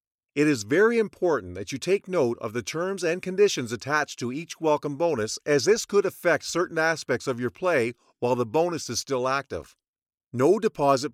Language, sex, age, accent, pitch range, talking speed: English, male, 50-69, American, 130-185 Hz, 190 wpm